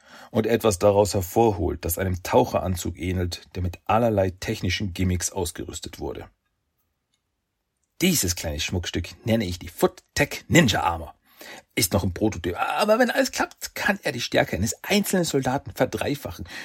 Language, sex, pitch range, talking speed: German, male, 90-115 Hz, 145 wpm